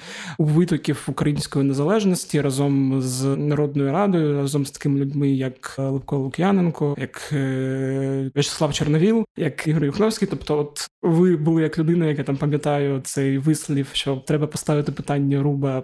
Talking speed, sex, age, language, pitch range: 145 wpm, male, 20-39, Ukrainian, 140-160 Hz